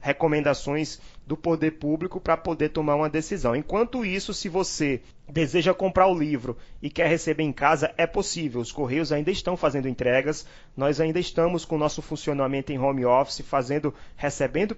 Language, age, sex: Portuguese, 20-39, male